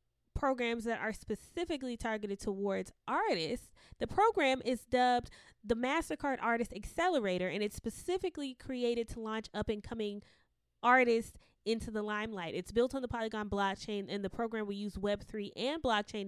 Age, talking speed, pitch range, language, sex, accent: 20-39, 145 wpm, 200-250 Hz, English, female, American